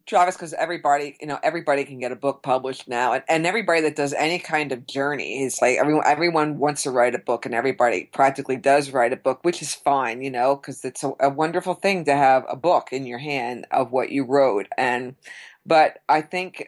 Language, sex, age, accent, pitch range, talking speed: English, female, 50-69, American, 130-150 Hz, 225 wpm